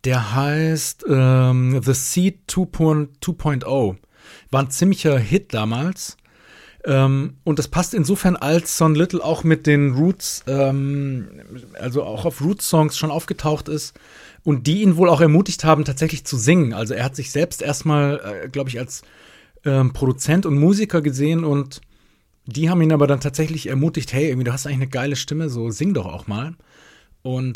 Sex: male